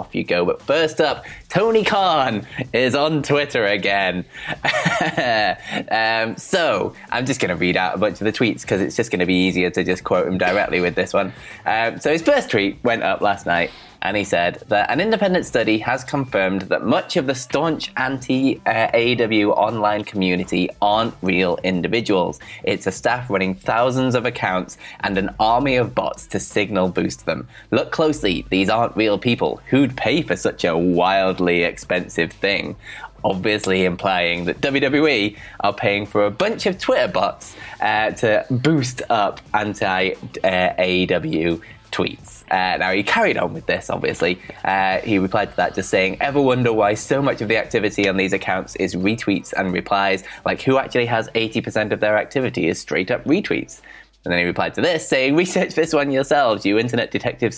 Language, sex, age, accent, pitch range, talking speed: English, male, 20-39, British, 95-125 Hz, 185 wpm